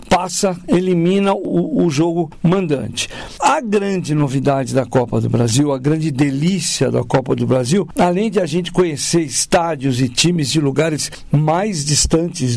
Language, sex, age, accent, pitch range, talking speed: Portuguese, male, 60-79, Brazilian, 150-200 Hz, 155 wpm